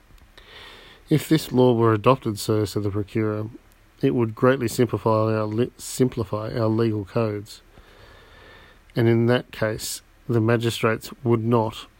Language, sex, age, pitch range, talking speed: English, male, 40-59, 105-115 Hz, 135 wpm